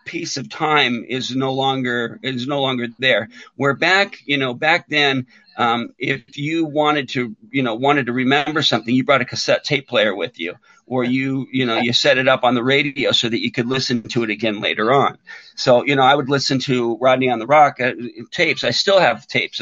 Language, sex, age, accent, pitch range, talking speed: English, male, 50-69, American, 120-145 Hz, 225 wpm